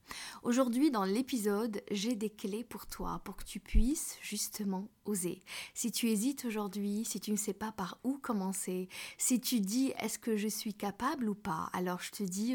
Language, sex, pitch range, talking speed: French, female, 195-240 Hz, 190 wpm